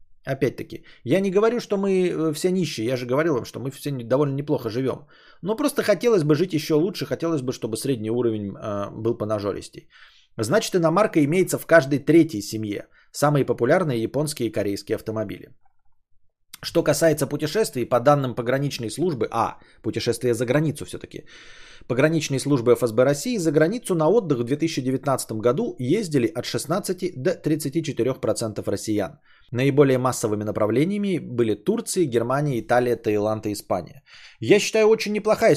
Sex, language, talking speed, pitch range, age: male, Bulgarian, 150 wpm, 110-160 Hz, 20-39